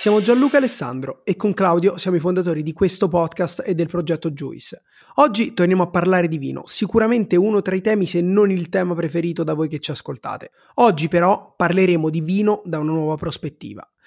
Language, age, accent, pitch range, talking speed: Italian, 30-49, native, 170-210 Hz, 195 wpm